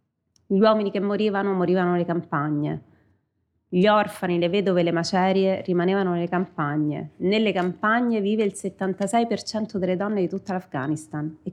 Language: Italian